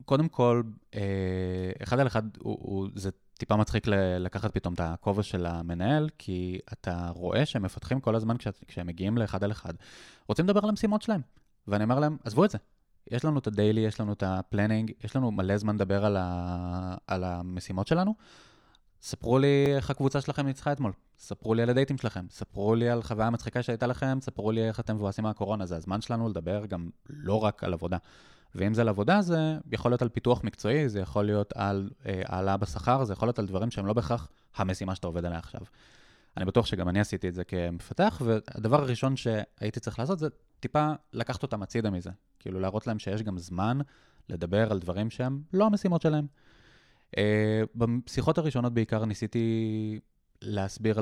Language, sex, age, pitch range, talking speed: Hebrew, male, 20-39, 95-125 Hz, 185 wpm